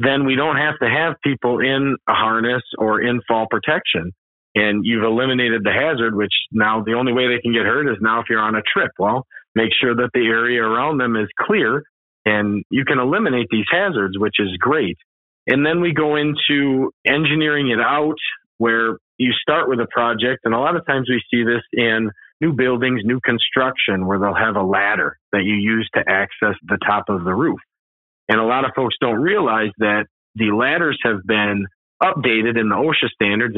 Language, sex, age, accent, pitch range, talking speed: English, male, 40-59, American, 105-130 Hz, 200 wpm